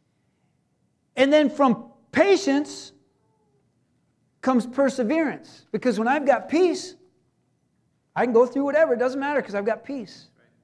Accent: American